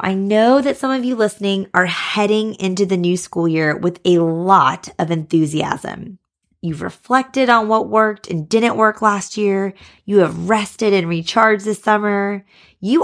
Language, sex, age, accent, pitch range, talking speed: English, female, 20-39, American, 170-220 Hz, 170 wpm